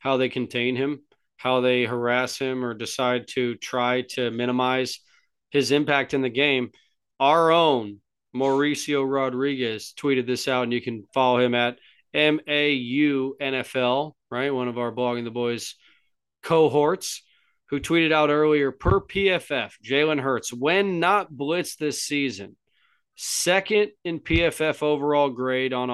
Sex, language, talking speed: male, English, 140 wpm